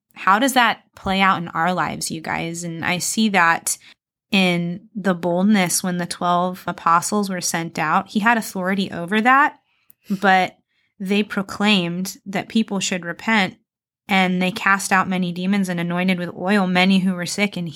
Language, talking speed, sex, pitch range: English, 170 wpm, female, 170-195 Hz